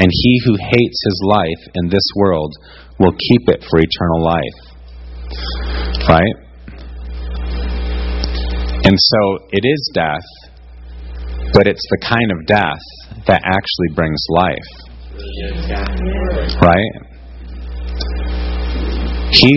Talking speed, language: 100 wpm, English